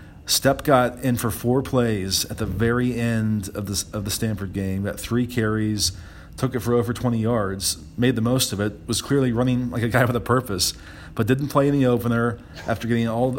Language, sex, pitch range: English, male, 110-120 Hz